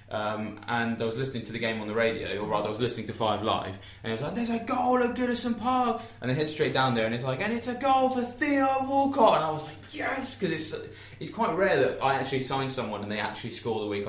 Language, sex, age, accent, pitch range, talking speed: English, male, 20-39, British, 105-140 Hz, 280 wpm